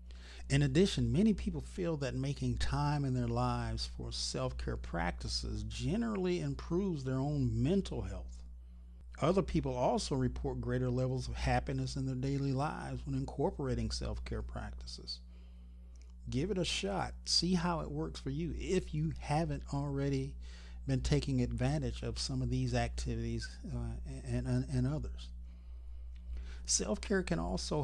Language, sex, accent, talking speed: English, male, American, 140 wpm